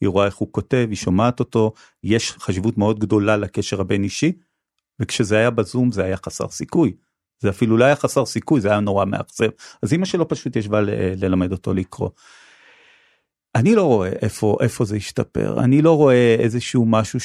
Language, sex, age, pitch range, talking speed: Hebrew, male, 40-59, 100-125 Hz, 185 wpm